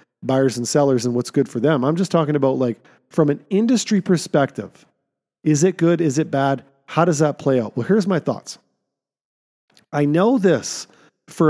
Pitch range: 135-180 Hz